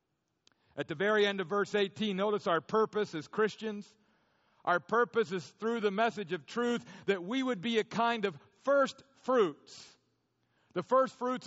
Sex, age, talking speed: male, 50-69, 165 wpm